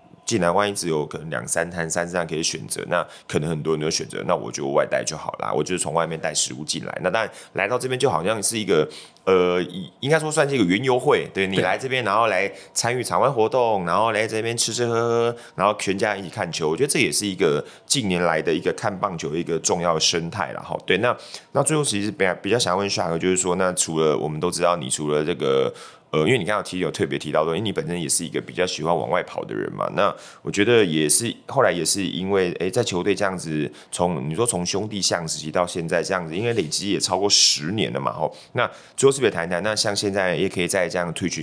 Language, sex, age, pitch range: Chinese, male, 30-49, 80-100 Hz